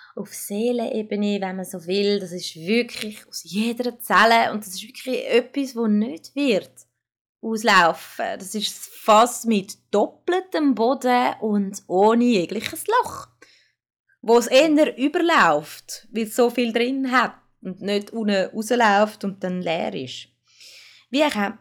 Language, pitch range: German, 200-245 Hz